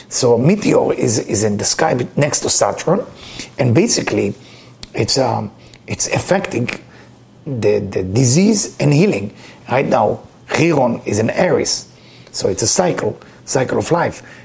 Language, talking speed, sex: English, 140 wpm, male